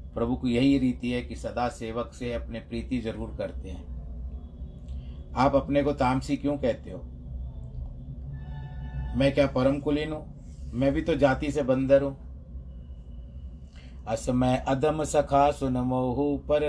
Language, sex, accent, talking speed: Hindi, male, native, 140 wpm